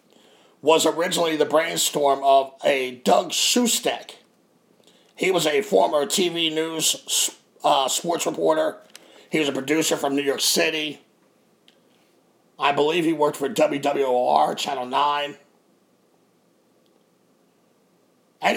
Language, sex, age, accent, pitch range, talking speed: English, male, 50-69, American, 140-170 Hz, 110 wpm